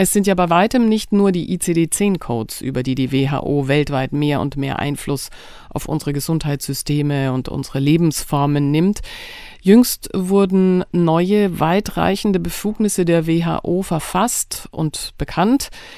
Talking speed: 130 wpm